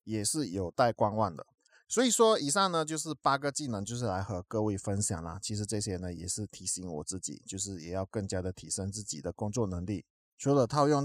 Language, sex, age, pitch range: Chinese, male, 20-39, 100-135 Hz